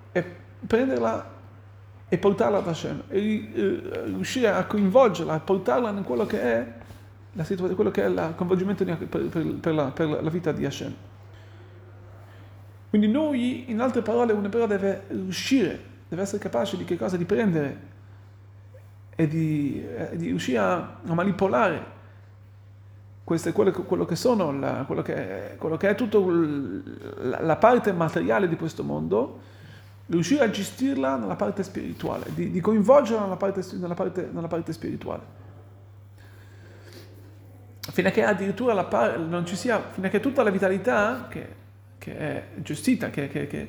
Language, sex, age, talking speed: Italian, male, 40-59, 145 wpm